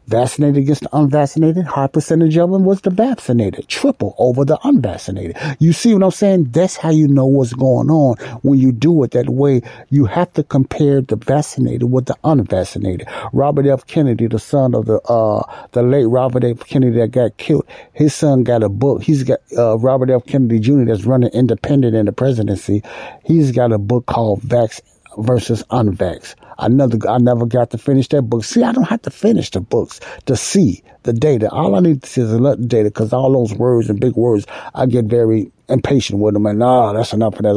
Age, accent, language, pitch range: 60-79, American, English, 115-140 Hz